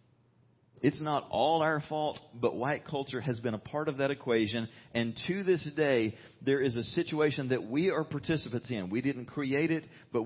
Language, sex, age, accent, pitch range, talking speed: English, male, 40-59, American, 105-145 Hz, 195 wpm